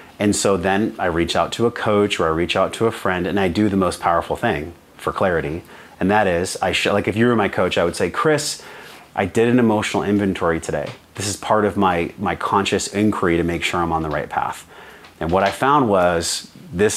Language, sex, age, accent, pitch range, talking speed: English, male, 30-49, American, 85-115 Hz, 235 wpm